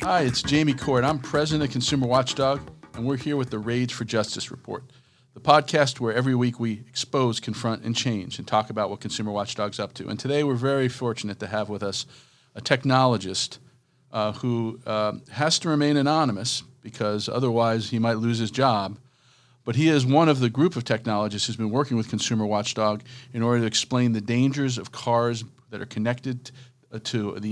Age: 50-69